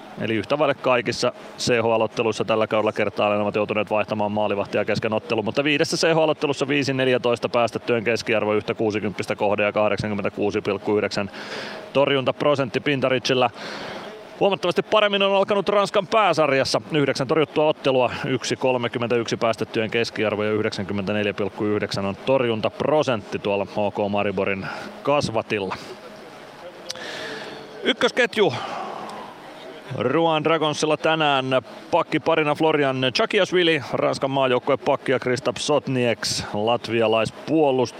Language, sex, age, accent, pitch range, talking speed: Finnish, male, 30-49, native, 105-145 Hz, 90 wpm